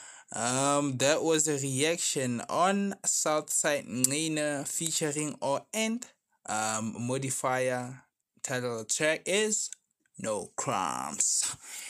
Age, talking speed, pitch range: 20-39, 90 wpm, 120-155 Hz